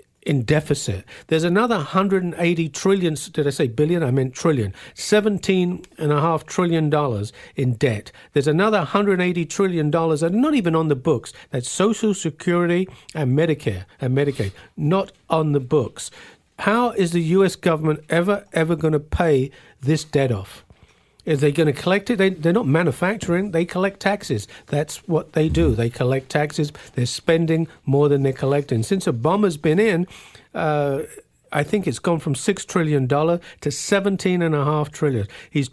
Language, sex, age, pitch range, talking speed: English, male, 50-69, 140-180 Hz, 160 wpm